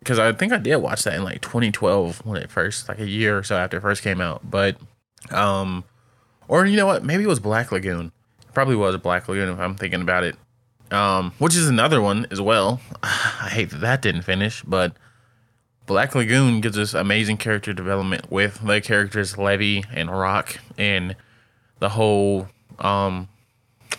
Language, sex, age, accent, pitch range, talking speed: English, male, 20-39, American, 100-115 Hz, 185 wpm